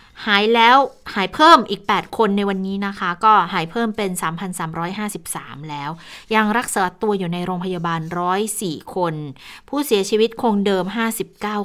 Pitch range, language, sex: 175-220 Hz, Thai, female